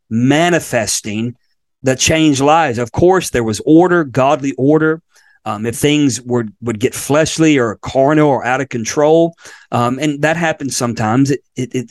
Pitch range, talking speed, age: 125-155 Hz, 155 wpm, 40-59